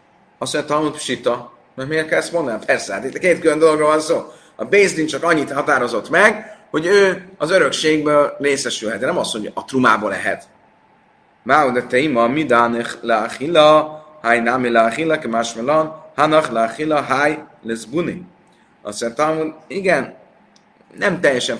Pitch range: 125-175 Hz